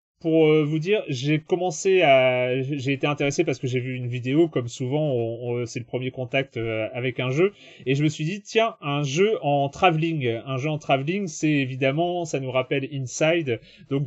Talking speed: 200 wpm